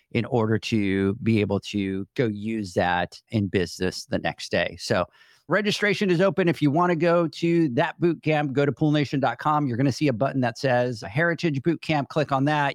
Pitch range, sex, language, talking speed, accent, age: 115-155 Hz, male, English, 200 wpm, American, 40-59